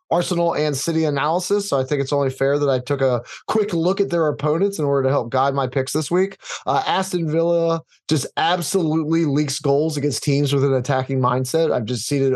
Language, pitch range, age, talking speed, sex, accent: English, 135-160 Hz, 20-39, 220 wpm, male, American